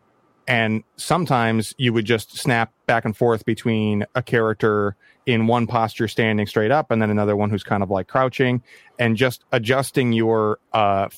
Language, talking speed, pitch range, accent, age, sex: English, 170 wpm, 110-130 Hz, American, 30-49, male